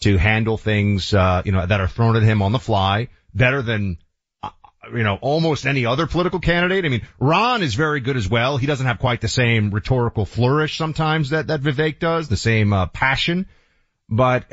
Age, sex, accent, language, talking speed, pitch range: 40-59, male, American, English, 205 wpm, 105-140 Hz